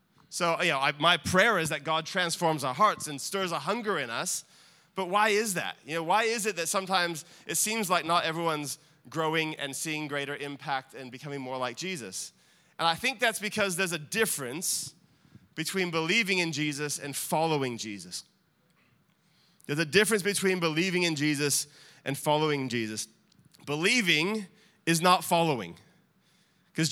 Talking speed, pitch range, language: 165 wpm, 145-190 Hz, English